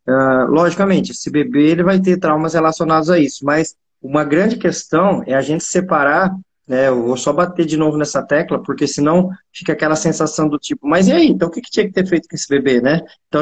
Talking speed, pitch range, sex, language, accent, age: 230 wpm, 140-175 Hz, male, Portuguese, Brazilian, 20-39